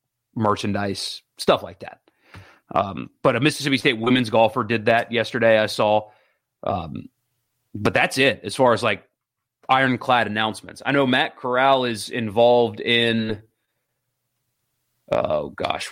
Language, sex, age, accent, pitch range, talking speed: English, male, 30-49, American, 110-130 Hz, 130 wpm